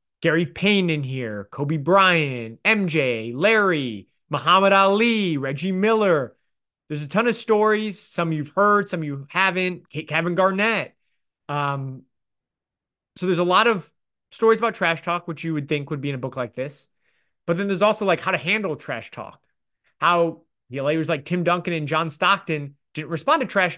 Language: English